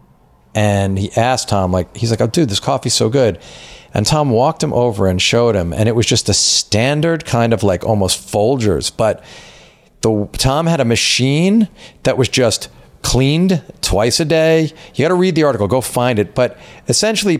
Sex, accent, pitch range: male, American, 105-145 Hz